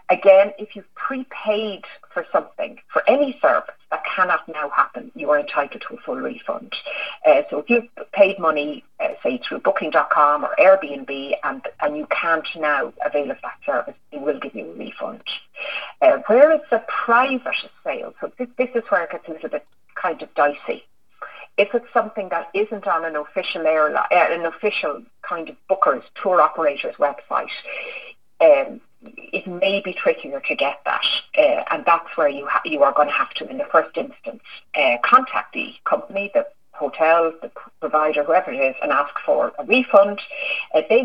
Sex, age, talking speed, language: female, 40-59, 185 wpm, English